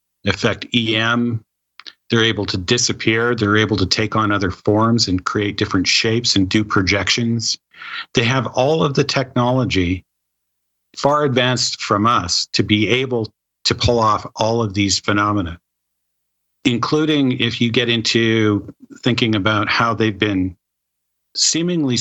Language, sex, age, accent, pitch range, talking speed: English, male, 50-69, American, 95-120 Hz, 140 wpm